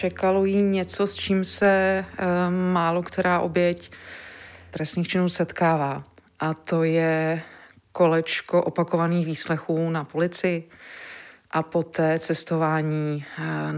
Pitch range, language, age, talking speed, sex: 160-180 Hz, Czech, 40-59, 105 wpm, female